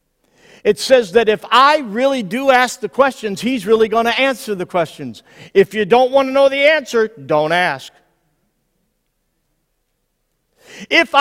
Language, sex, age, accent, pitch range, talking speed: English, male, 50-69, American, 170-275 Hz, 150 wpm